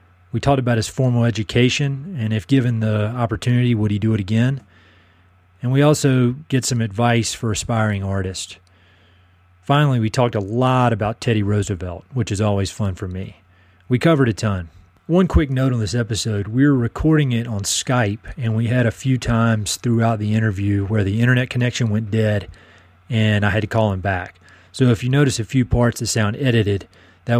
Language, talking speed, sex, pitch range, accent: English, 195 wpm, male, 95-120 Hz, American